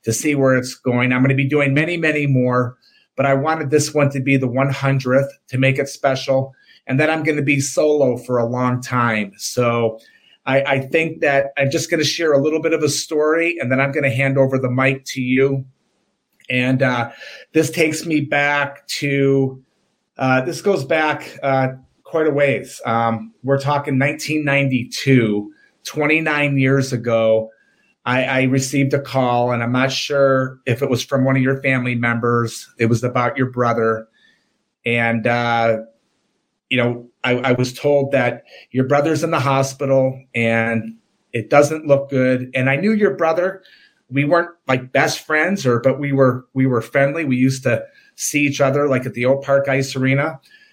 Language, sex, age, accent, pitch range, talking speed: English, male, 30-49, American, 125-145 Hz, 180 wpm